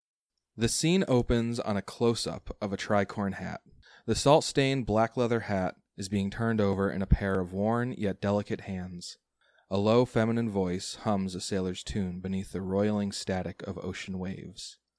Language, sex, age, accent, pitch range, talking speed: English, male, 20-39, American, 95-105 Hz, 170 wpm